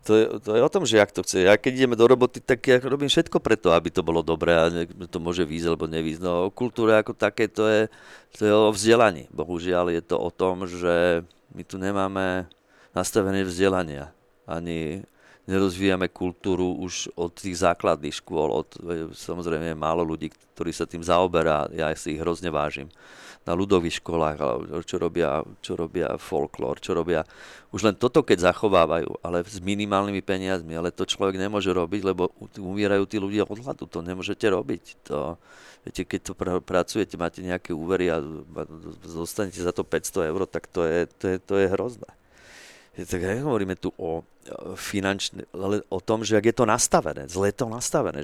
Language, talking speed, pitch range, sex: Slovak, 180 wpm, 85-100 Hz, male